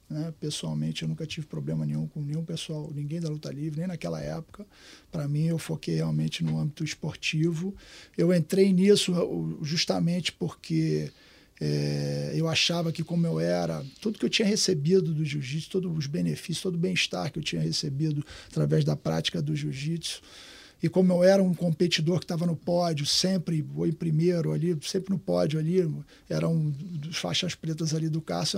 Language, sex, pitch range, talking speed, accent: Portuguese, male, 140-180 Hz, 185 wpm, Brazilian